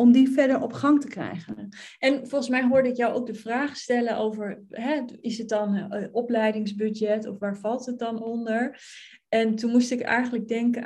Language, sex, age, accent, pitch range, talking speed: Dutch, female, 30-49, Dutch, 205-245 Hz, 195 wpm